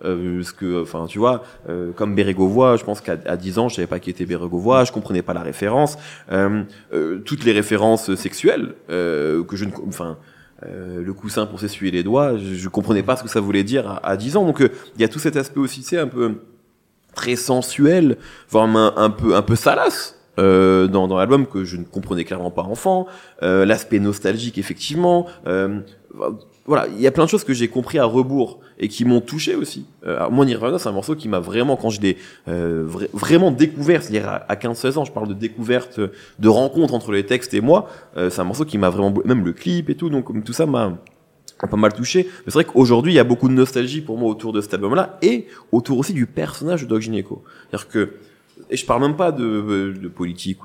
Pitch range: 95-130 Hz